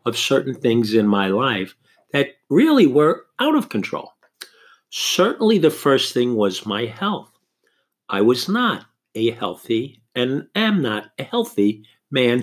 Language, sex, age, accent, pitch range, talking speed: English, male, 50-69, American, 110-165 Hz, 145 wpm